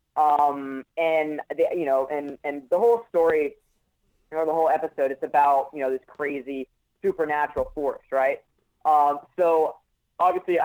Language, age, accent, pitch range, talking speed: English, 20-39, American, 140-165 Hz, 160 wpm